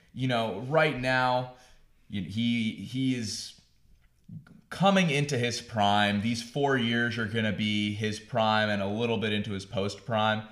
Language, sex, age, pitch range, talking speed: English, male, 20-39, 100-120 Hz, 155 wpm